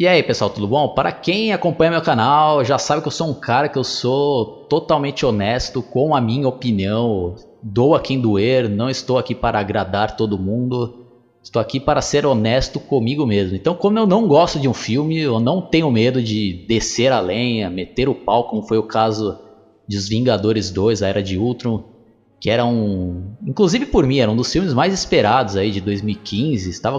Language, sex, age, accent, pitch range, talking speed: Portuguese, male, 20-39, Brazilian, 105-140 Hz, 200 wpm